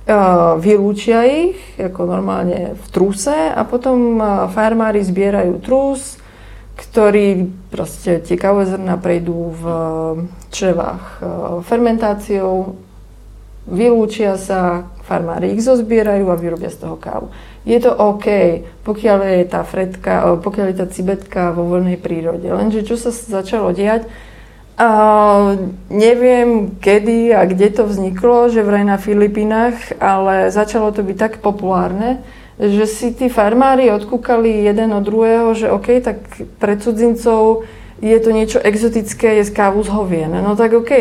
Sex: female